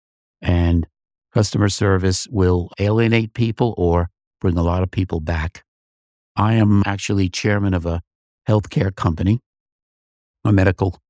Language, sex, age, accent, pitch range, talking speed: English, male, 60-79, American, 90-105 Hz, 125 wpm